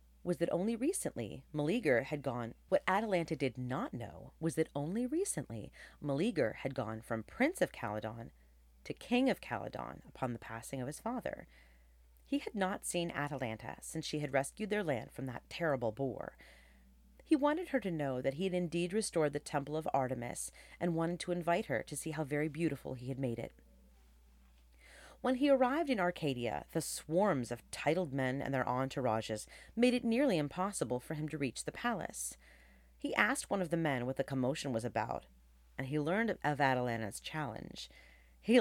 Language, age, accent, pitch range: English, 40-59, American, 110-170 Hz